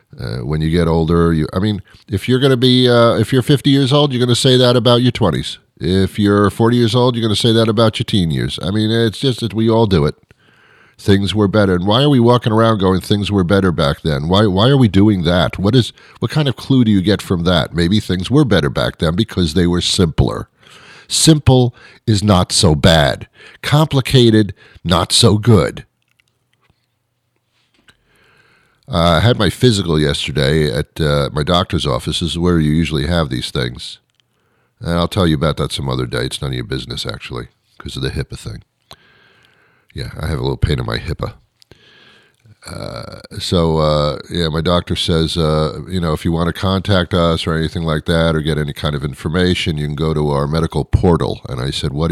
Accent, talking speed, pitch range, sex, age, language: American, 215 wpm, 80-115 Hz, male, 50-69, English